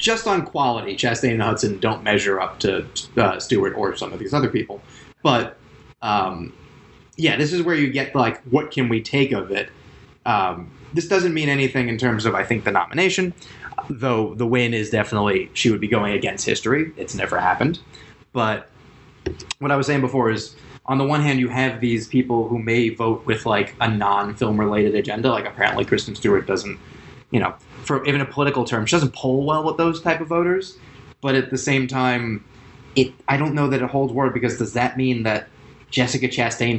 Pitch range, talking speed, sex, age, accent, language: 115-140 Hz, 205 wpm, male, 20-39, American, English